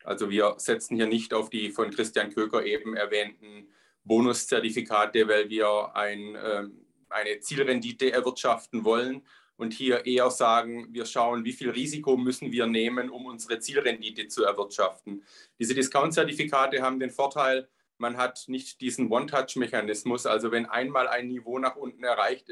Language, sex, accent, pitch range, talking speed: German, male, German, 110-125 Hz, 150 wpm